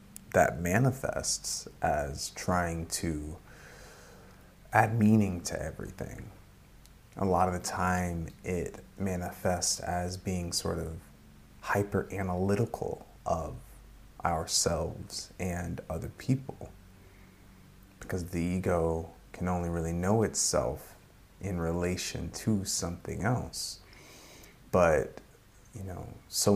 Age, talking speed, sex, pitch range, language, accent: 30-49, 95 wpm, male, 85-100 Hz, English, American